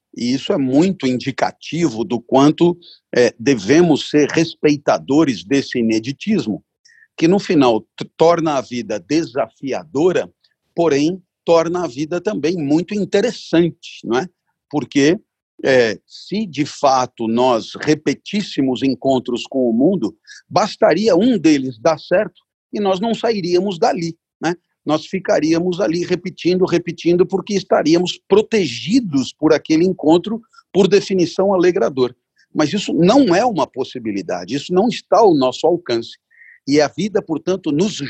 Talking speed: 130 wpm